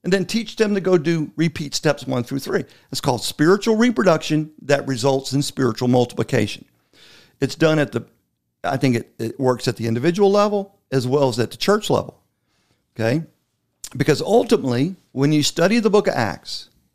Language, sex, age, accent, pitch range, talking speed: English, male, 50-69, American, 120-165 Hz, 180 wpm